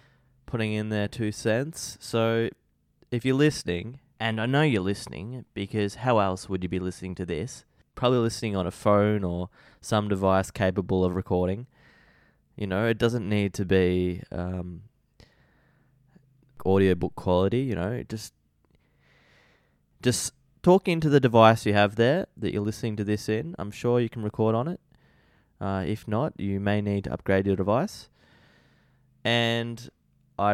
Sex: male